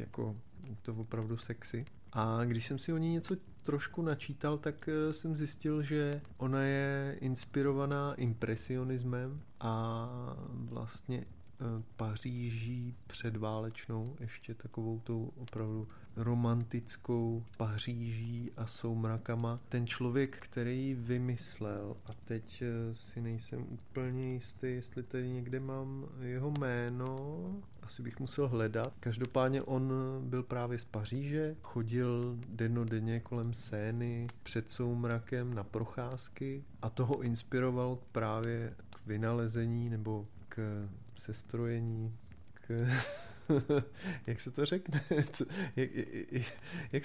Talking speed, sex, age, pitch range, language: 105 wpm, male, 30-49, 115-130 Hz, Czech